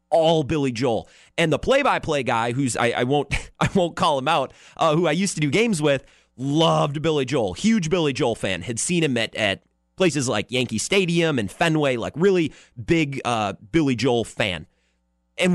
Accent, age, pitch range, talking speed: American, 30-49, 105-170 Hz, 200 wpm